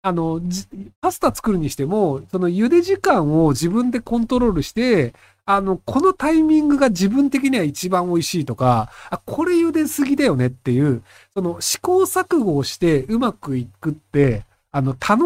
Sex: male